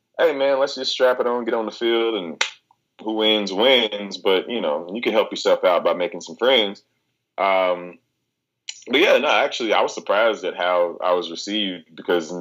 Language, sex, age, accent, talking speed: English, male, 20-39, American, 200 wpm